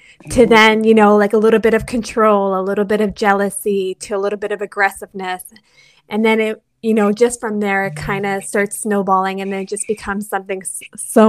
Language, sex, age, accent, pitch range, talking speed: English, female, 20-39, American, 195-220 Hz, 215 wpm